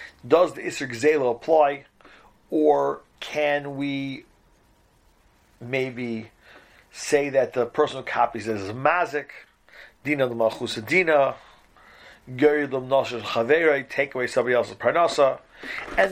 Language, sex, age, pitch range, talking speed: English, male, 40-59, 125-155 Hz, 110 wpm